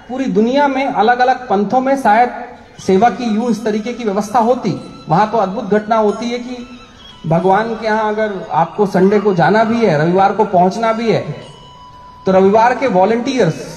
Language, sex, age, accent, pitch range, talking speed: Hindi, male, 40-59, native, 165-230 Hz, 185 wpm